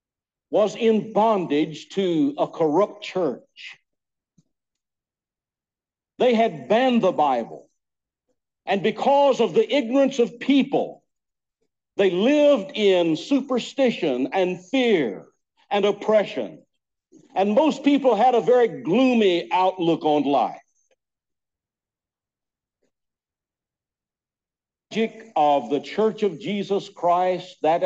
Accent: American